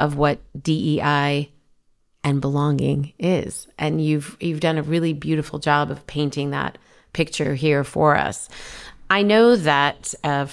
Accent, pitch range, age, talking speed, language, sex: American, 135-160 Hz, 40-59, 140 wpm, English, female